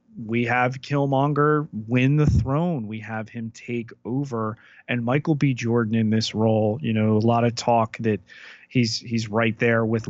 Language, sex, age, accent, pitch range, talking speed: English, male, 30-49, American, 115-135 Hz, 180 wpm